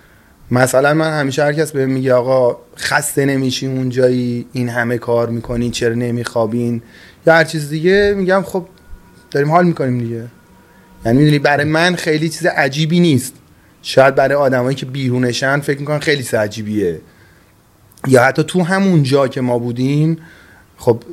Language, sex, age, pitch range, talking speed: Persian, male, 30-49, 115-150 Hz, 155 wpm